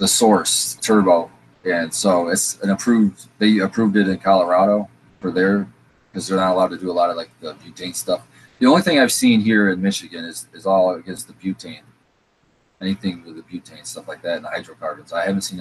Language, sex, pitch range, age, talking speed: English, male, 90-105 Hz, 30-49, 210 wpm